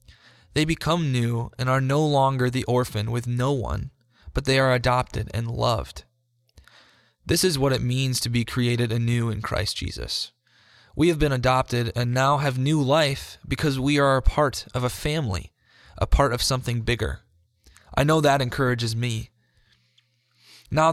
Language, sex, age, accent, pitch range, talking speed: English, male, 20-39, American, 115-140 Hz, 165 wpm